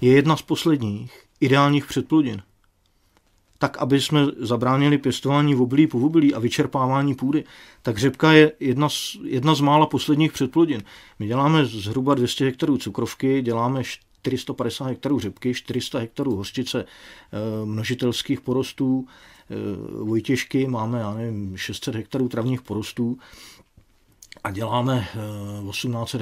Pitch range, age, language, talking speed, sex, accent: 115-145 Hz, 40-59, Czech, 120 wpm, male, native